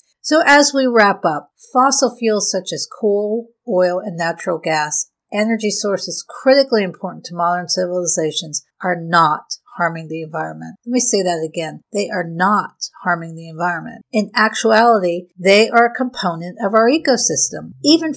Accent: American